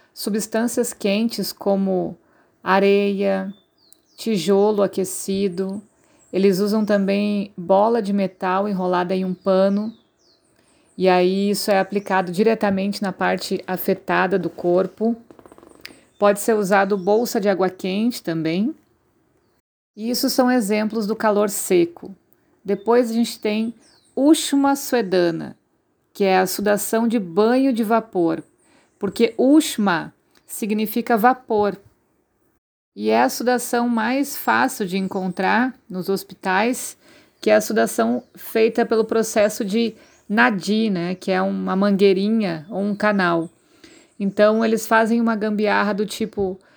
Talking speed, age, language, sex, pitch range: 120 wpm, 50-69, Portuguese, female, 195-230 Hz